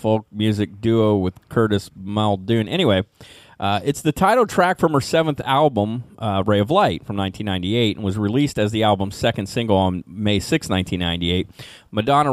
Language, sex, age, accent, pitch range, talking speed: English, male, 30-49, American, 95-125 Hz, 170 wpm